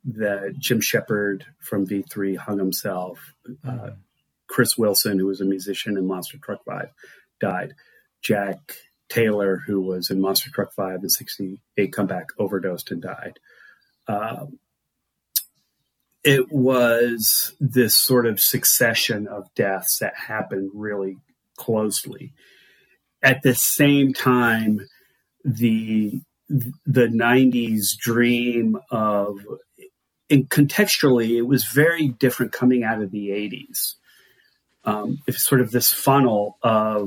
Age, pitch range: 40-59, 105-130 Hz